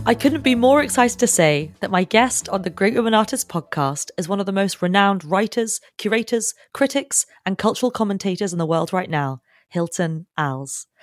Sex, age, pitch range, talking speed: female, 30-49, 155-215 Hz, 190 wpm